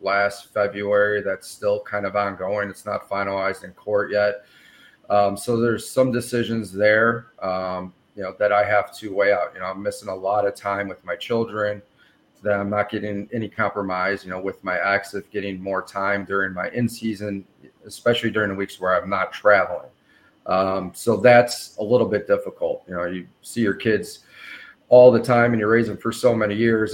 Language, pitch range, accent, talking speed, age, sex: English, 100-120 Hz, American, 200 wpm, 40-59, male